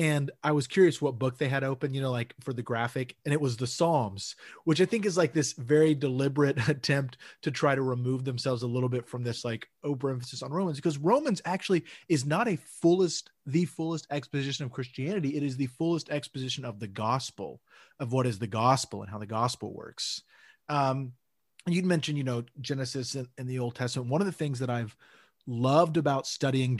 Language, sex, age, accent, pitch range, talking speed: English, male, 30-49, American, 125-150 Hz, 205 wpm